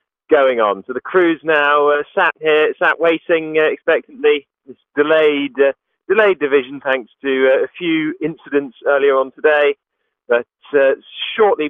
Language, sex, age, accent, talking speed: English, male, 30-49, British, 155 wpm